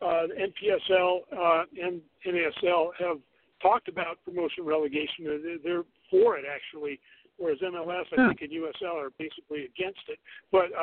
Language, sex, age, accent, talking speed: English, male, 50-69, American, 145 wpm